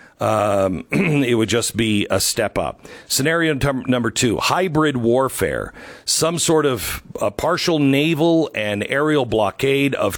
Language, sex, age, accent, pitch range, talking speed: English, male, 50-69, American, 105-145 Hz, 135 wpm